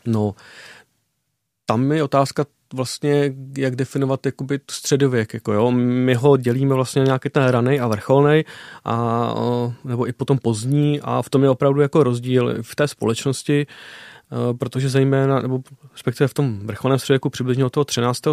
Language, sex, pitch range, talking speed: Czech, male, 120-135 Hz, 155 wpm